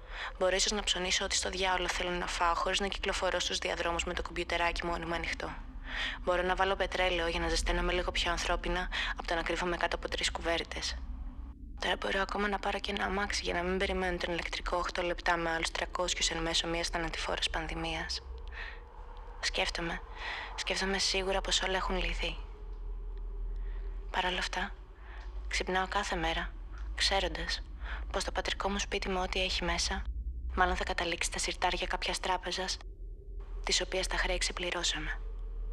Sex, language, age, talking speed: female, Greek, 20-39, 165 wpm